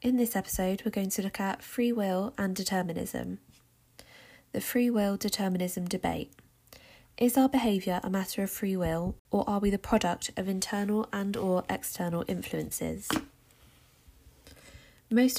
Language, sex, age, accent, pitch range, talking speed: English, female, 20-39, British, 180-220 Hz, 145 wpm